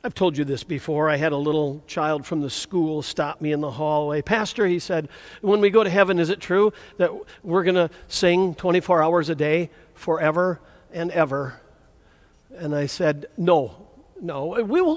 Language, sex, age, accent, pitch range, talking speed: English, male, 50-69, American, 155-225 Hz, 195 wpm